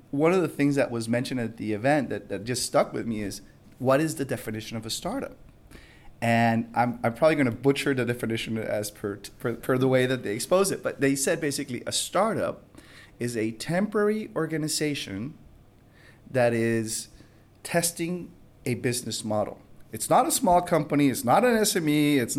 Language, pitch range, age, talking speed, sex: English, 120-155 Hz, 30-49, 190 wpm, male